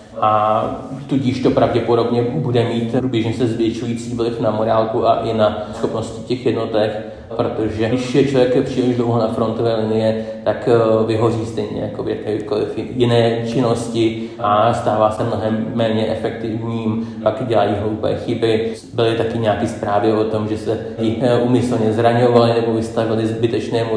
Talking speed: 140 wpm